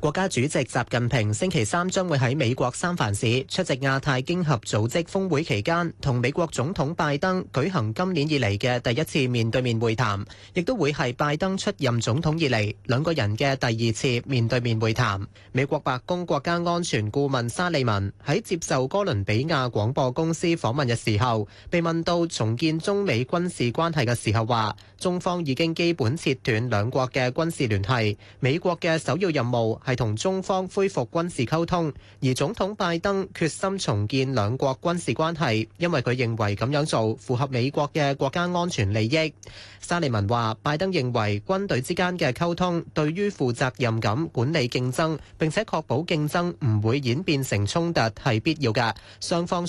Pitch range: 120-170 Hz